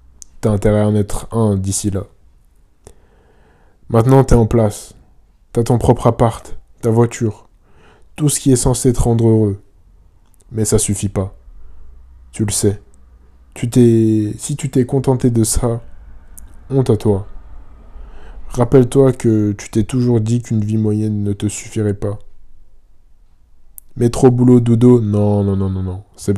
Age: 20-39